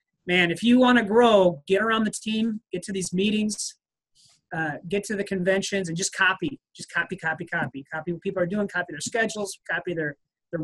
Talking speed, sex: 210 wpm, male